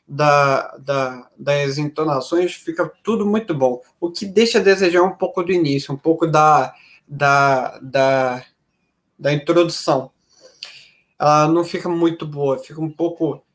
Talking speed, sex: 140 wpm, male